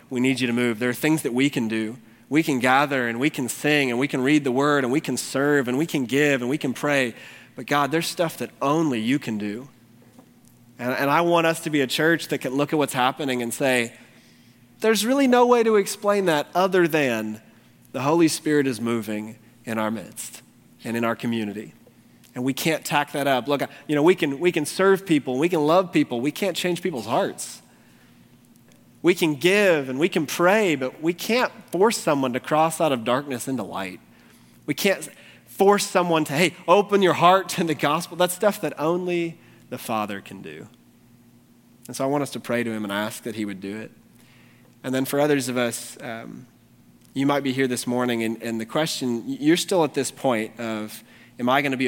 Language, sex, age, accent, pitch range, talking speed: English, male, 30-49, American, 120-160 Hz, 220 wpm